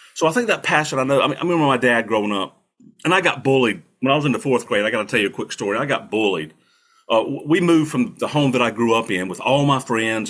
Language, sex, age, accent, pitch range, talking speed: English, male, 40-59, American, 110-135 Hz, 305 wpm